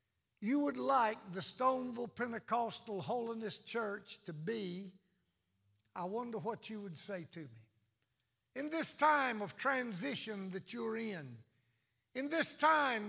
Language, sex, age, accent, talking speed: English, male, 60-79, American, 135 wpm